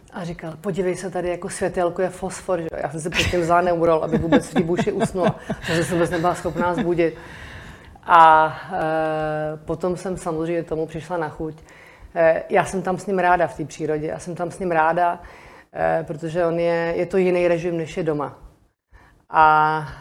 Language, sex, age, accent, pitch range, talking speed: Czech, female, 30-49, native, 155-175 Hz, 195 wpm